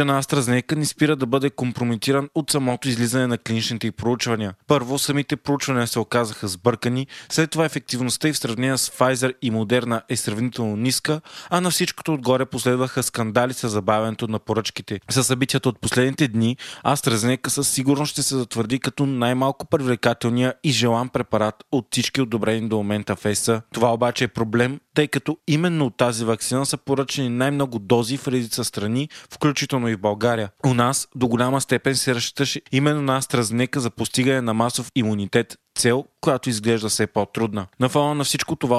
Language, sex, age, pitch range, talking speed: Bulgarian, male, 20-39, 115-140 Hz, 175 wpm